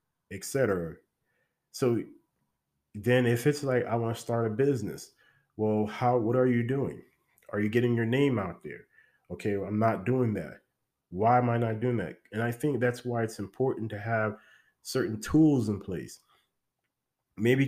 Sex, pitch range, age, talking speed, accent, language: male, 105-125 Hz, 30-49, 170 wpm, American, English